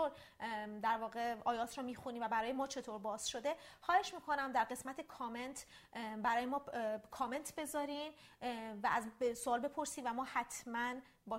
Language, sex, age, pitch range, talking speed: Persian, female, 30-49, 220-270 Hz, 150 wpm